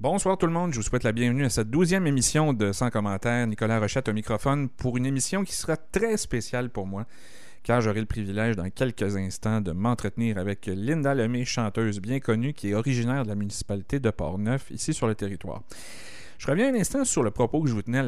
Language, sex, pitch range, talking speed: French, male, 100-125 Hz, 230 wpm